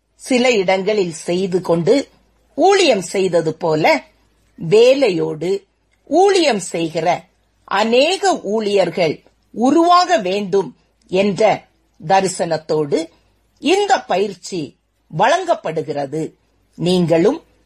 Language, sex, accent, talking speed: Tamil, female, native, 70 wpm